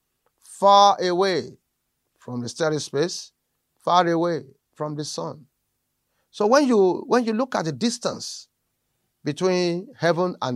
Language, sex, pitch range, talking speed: English, male, 140-195 Hz, 130 wpm